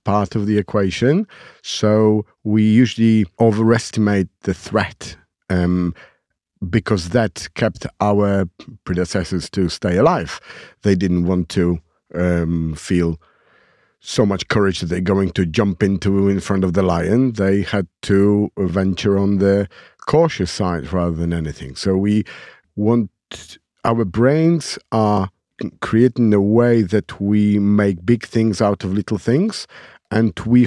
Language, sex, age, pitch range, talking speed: English, male, 50-69, 95-115 Hz, 135 wpm